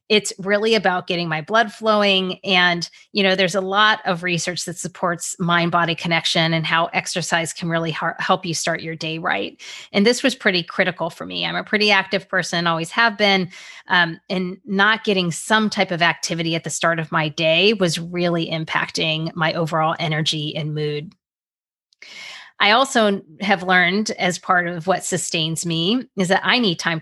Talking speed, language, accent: 180 wpm, English, American